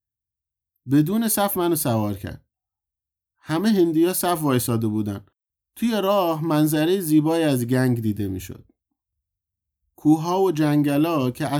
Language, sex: Persian, male